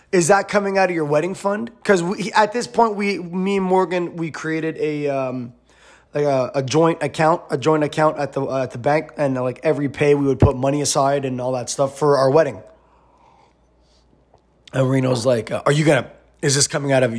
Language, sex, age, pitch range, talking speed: English, male, 20-39, 140-200 Hz, 220 wpm